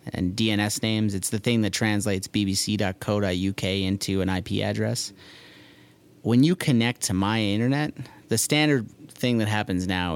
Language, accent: English, American